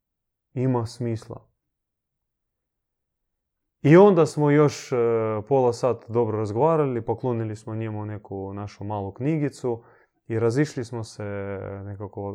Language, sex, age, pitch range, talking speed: Croatian, male, 30-49, 105-130 Hz, 105 wpm